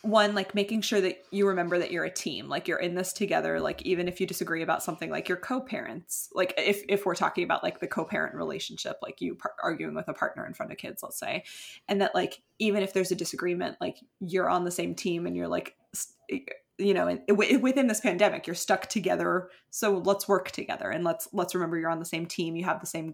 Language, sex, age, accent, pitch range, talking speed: English, female, 20-39, American, 175-205 Hz, 240 wpm